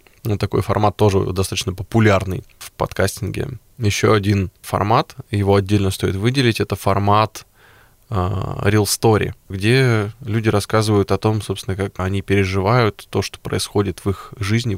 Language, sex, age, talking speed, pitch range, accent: Russian, male, 20-39, 140 wpm, 100-115 Hz, native